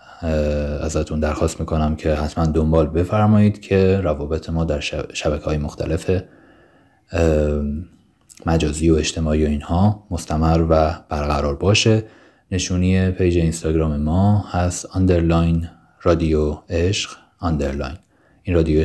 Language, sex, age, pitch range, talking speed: English, male, 30-49, 75-95 Hz, 110 wpm